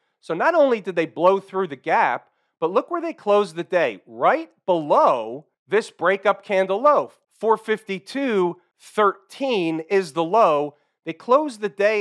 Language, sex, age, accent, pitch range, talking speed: English, male, 40-59, American, 165-195 Hz, 150 wpm